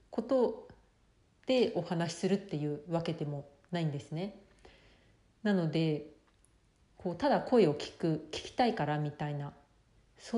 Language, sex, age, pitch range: Japanese, female, 40-59, 150-190 Hz